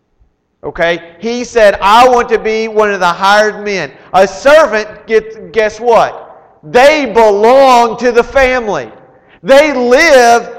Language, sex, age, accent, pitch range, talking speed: English, male, 40-59, American, 195-260 Hz, 135 wpm